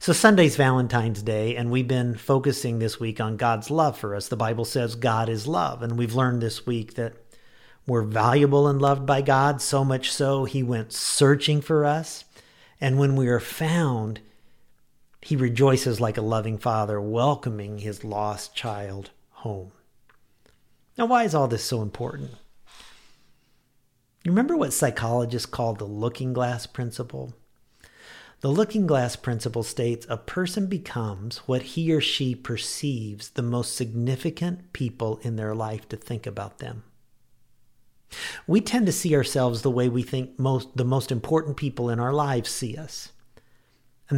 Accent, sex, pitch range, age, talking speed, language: American, male, 115-145 Hz, 50-69, 160 wpm, English